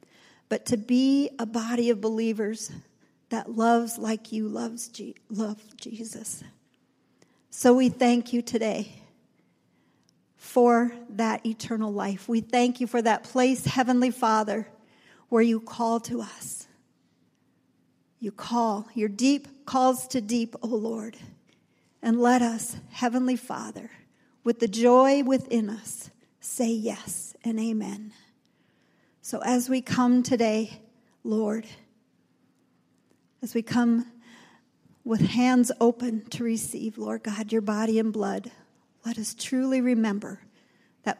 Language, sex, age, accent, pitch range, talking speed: English, female, 50-69, American, 215-245 Hz, 125 wpm